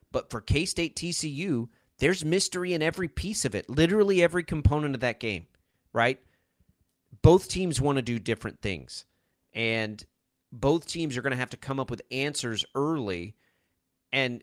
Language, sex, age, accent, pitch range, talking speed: English, male, 30-49, American, 120-175 Hz, 160 wpm